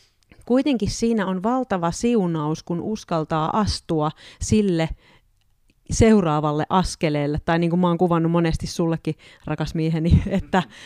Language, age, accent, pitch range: Finnish, 30-49, native, 160-185 Hz